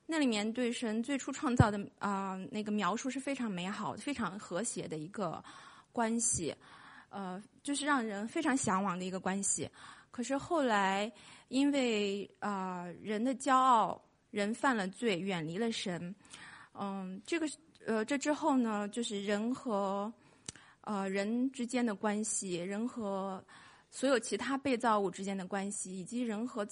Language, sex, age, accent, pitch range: English, female, 20-39, Chinese, 200-255 Hz